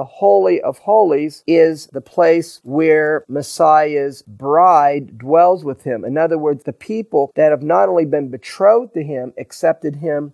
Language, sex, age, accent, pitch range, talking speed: English, male, 40-59, American, 140-170 Hz, 165 wpm